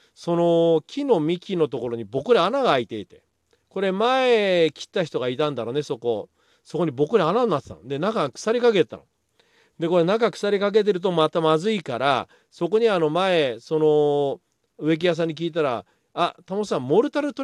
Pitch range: 145-220 Hz